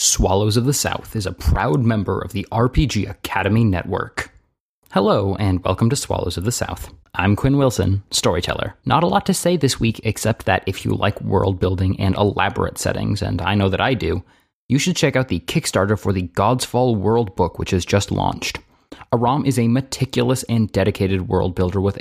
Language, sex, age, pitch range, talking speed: English, male, 20-39, 95-125 Hz, 200 wpm